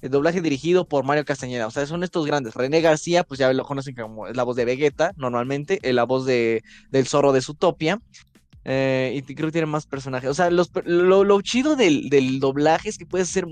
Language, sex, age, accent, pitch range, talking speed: Spanish, male, 20-39, Mexican, 135-165 Hz, 230 wpm